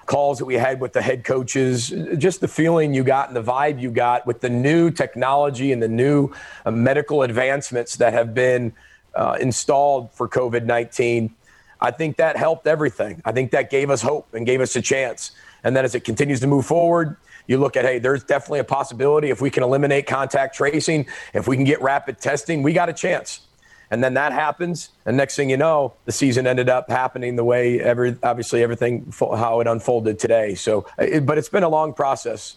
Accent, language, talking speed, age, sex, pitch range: American, English, 210 wpm, 40-59, male, 120-145 Hz